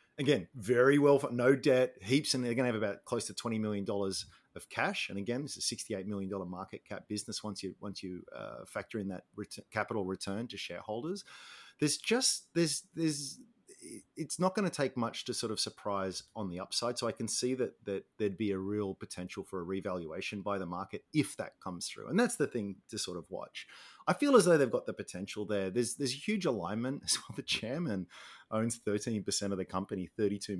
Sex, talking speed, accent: male, 225 wpm, Australian